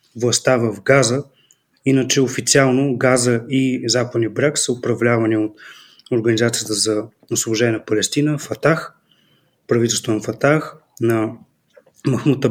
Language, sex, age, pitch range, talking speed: Bulgarian, male, 30-49, 115-140 Hz, 110 wpm